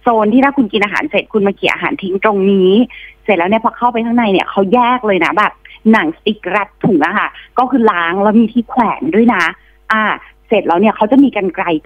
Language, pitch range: Thai, 185-245 Hz